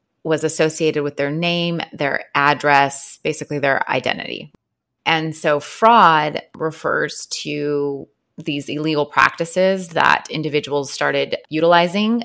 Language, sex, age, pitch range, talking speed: English, female, 20-39, 140-165 Hz, 110 wpm